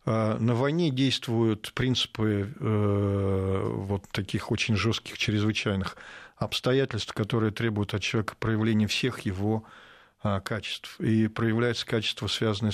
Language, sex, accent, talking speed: Russian, male, native, 105 wpm